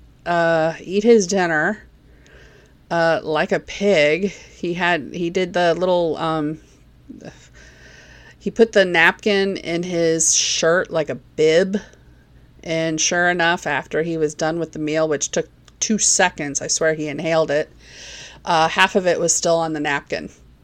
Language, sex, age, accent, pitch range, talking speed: English, female, 30-49, American, 155-195 Hz, 155 wpm